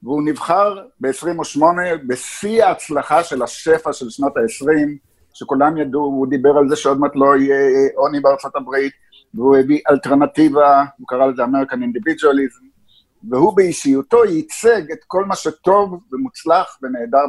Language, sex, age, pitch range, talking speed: Hebrew, male, 50-69, 135-210 Hz, 135 wpm